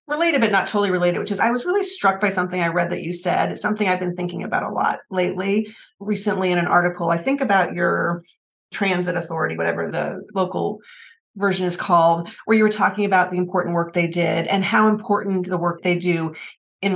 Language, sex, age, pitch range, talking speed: English, female, 30-49, 170-200 Hz, 215 wpm